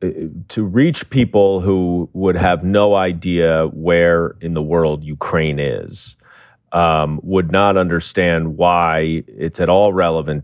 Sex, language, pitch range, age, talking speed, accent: male, English, 85-105 Hz, 30-49, 130 wpm, American